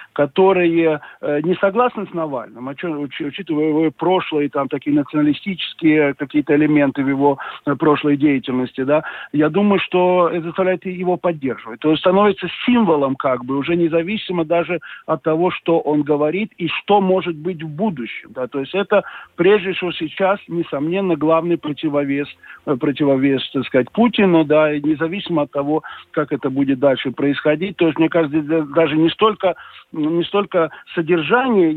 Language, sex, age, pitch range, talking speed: Russian, male, 50-69, 145-180 Hz, 150 wpm